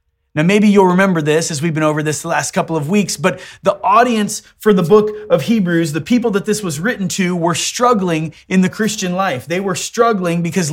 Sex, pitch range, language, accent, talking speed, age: male, 165-210 Hz, English, American, 225 wpm, 30-49